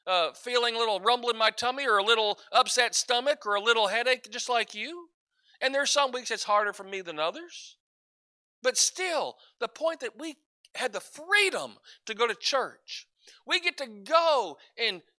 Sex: male